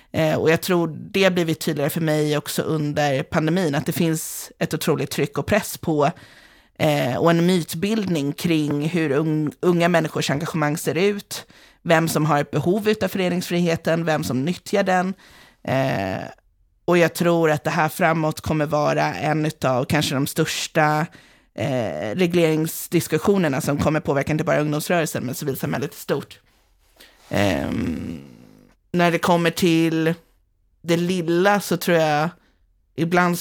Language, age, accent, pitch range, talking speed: Swedish, 30-49, native, 150-175 Hz, 135 wpm